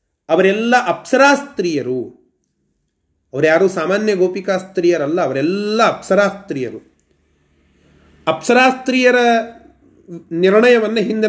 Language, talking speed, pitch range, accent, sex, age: Kannada, 55 wpm, 180-240 Hz, native, male, 30-49